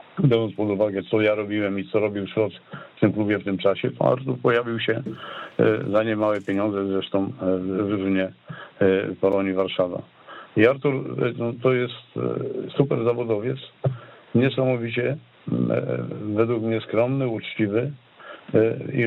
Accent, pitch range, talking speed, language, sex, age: native, 100-120 Hz, 125 wpm, Polish, male, 50-69